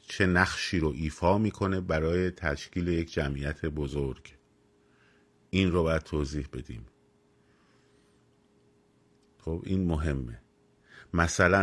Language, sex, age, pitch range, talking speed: Persian, male, 50-69, 75-90 Hz, 100 wpm